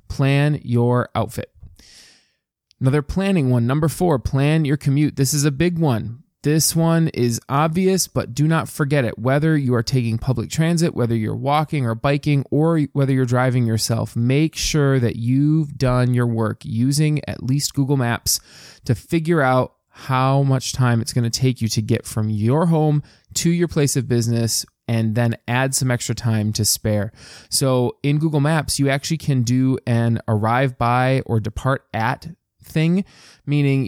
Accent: American